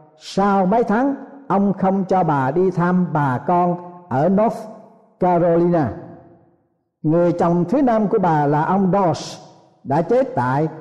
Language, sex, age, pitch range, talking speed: Vietnamese, male, 60-79, 155-205 Hz, 145 wpm